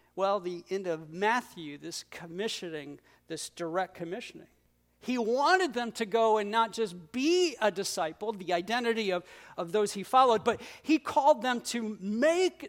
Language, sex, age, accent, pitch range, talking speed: English, male, 50-69, American, 195-260 Hz, 160 wpm